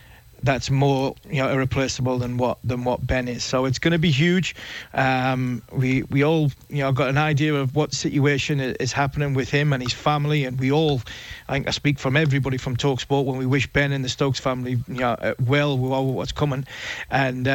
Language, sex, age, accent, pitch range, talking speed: English, male, 30-49, British, 130-145 Hz, 215 wpm